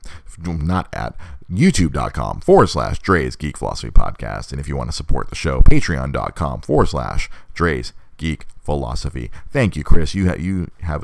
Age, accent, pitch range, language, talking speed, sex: 40-59, American, 75-95 Hz, English, 170 wpm, male